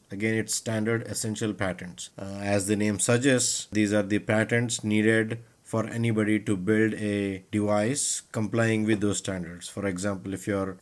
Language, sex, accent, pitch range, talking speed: English, male, Indian, 100-110 Hz, 160 wpm